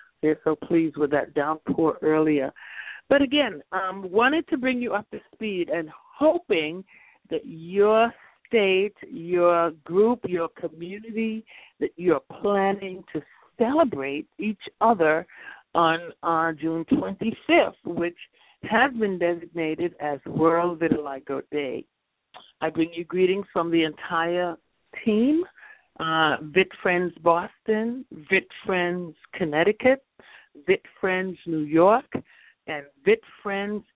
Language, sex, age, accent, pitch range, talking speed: English, female, 60-79, American, 165-220 Hz, 120 wpm